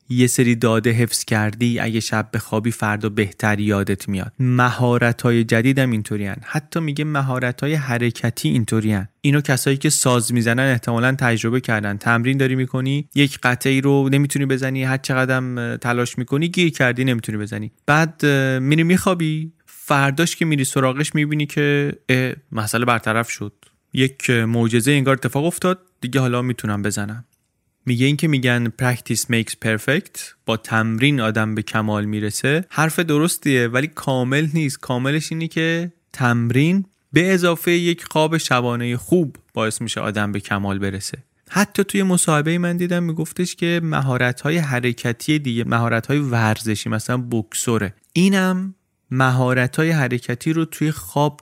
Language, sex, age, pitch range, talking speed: Persian, male, 30-49, 115-150 Hz, 145 wpm